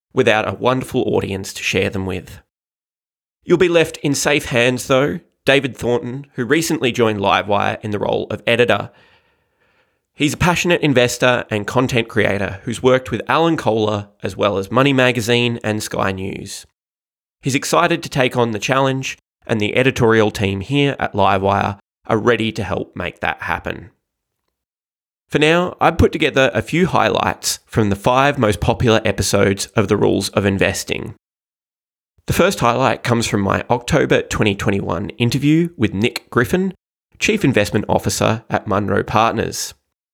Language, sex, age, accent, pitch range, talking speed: English, male, 20-39, Australian, 105-140 Hz, 155 wpm